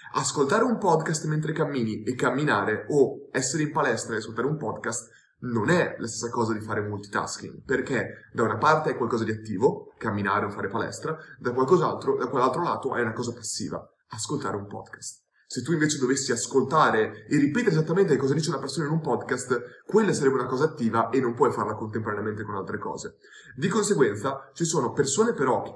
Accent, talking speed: native, 190 wpm